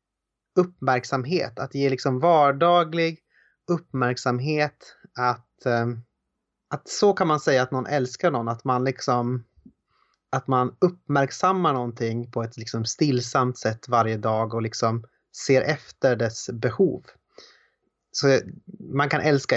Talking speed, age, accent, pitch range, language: 125 wpm, 30-49, native, 115-140 Hz, Swedish